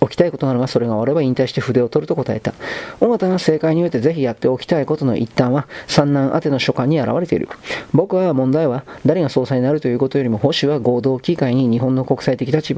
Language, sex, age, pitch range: Japanese, male, 40-59, 130-160 Hz